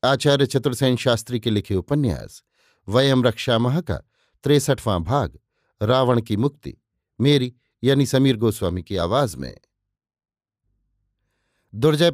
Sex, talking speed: male, 110 wpm